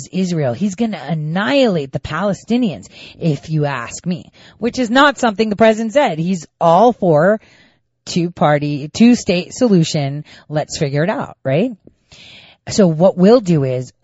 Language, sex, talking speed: English, female, 145 wpm